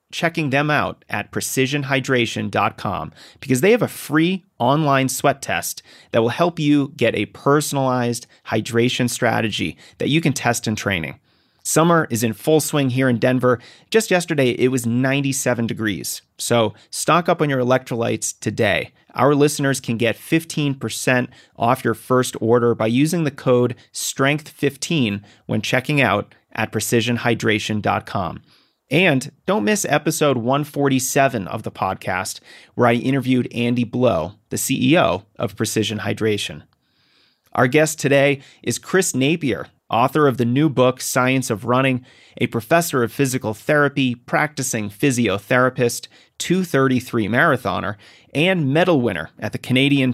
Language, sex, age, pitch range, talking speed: English, male, 30-49, 115-140 Hz, 140 wpm